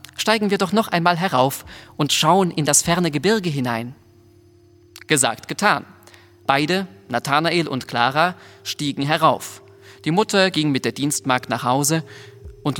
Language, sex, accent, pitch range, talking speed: German, male, German, 125-155 Hz, 140 wpm